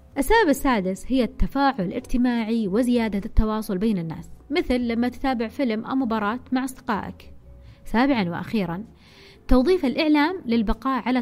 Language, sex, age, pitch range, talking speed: Arabic, female, 20-39, 200-265 Hz, 125 wpm